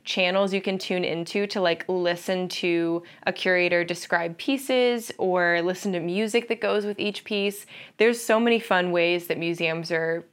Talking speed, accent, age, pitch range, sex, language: 175 wpm, American, 20-39, 175-225 Hz, female, English